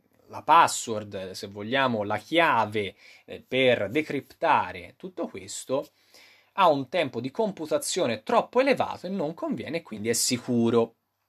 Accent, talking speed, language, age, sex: native, 120 wpm, Italian, 20-39, male